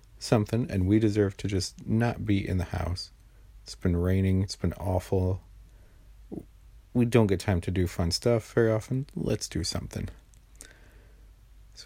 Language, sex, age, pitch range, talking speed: English, male, 40-59, 90-110 Hz, 155 wpm